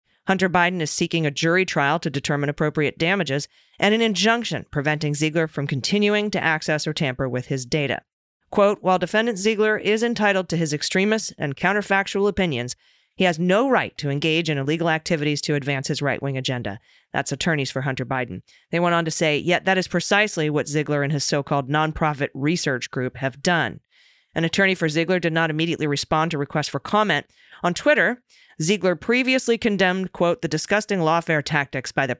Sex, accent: female, American